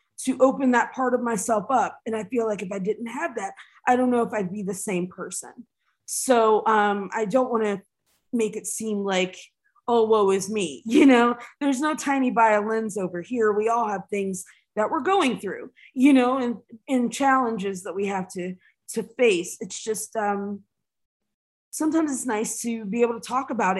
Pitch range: 200-250 Hz